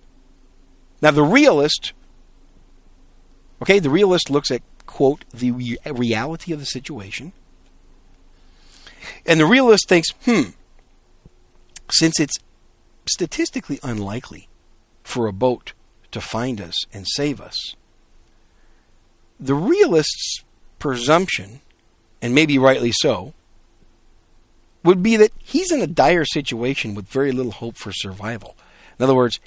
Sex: male